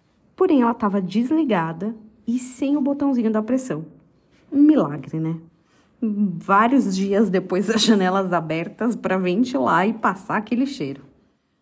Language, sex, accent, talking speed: Portuguese, female, Brazilian, 130 wpm